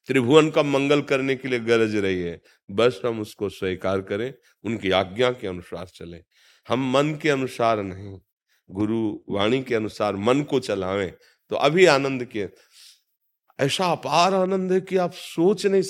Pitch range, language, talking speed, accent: 100-140 Hz, Hindi, 160 wpm, native